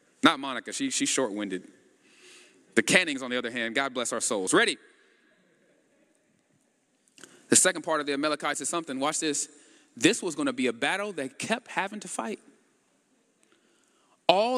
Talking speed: 155 wpm